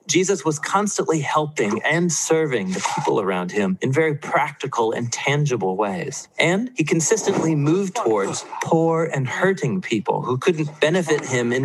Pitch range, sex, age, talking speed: 130-180 Hz, male, 40-59, 155 wpm